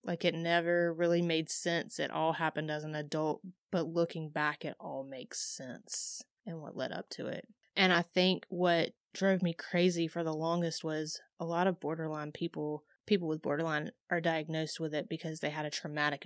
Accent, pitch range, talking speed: American, 155-185 Hz, 195 wpm